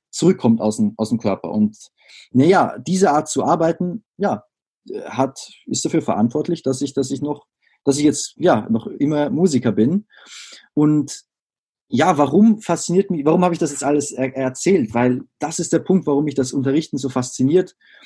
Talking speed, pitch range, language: 180 wpm, 125-175 Hz, German